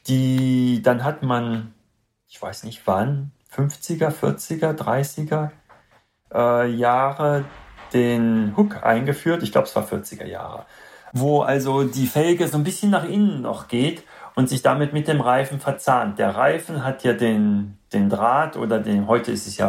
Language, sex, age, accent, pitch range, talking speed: German, male, 40-59, German, 115-150 Hz, 160 wpm